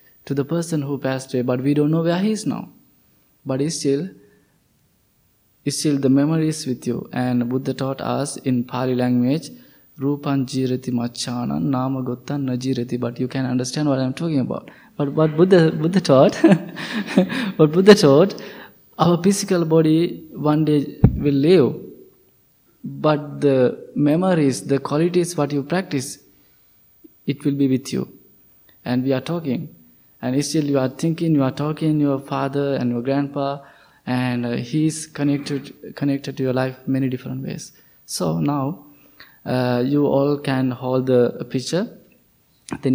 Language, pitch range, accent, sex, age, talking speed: English, 125-150 Hz, Indian, male, 20-39, 145 wpm